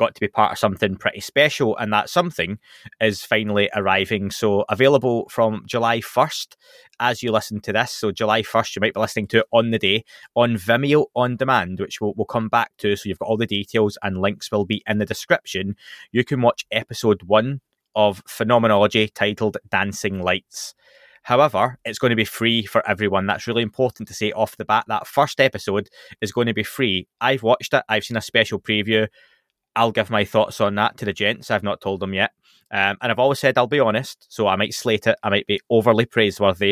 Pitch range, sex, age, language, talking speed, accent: 105-115 Hz, male, 20-39, English, 215 wpm, British